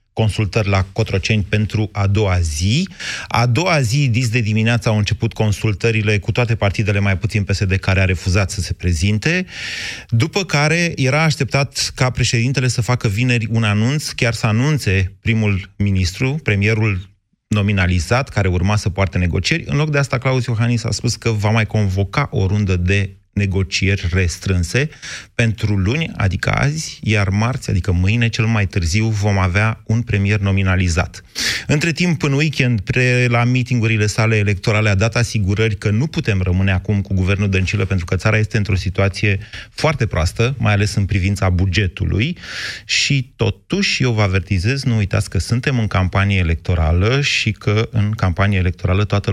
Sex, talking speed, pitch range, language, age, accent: male, 165 wpm, 95-120 Hz, Romanian, 30-49, native